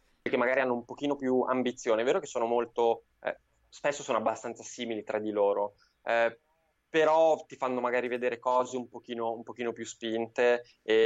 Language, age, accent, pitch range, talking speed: Italian, 20-39, native, 110-125 Hz, 185 wpm